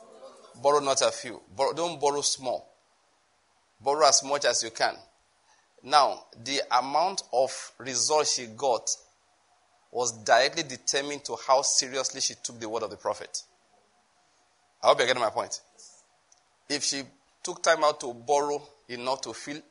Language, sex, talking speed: English, male, 150 wpm